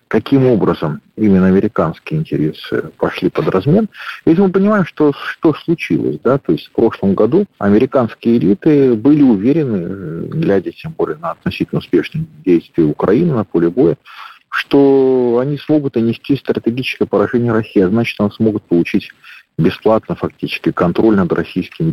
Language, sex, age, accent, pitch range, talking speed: Russian, male, 40-59, native, 105-150 Hz, 140 wpm